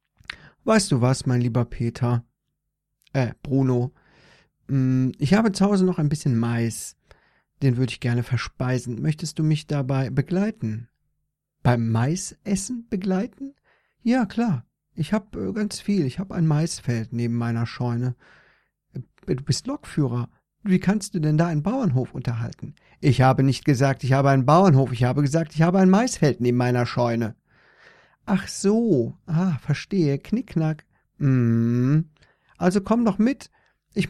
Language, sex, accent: German, male, German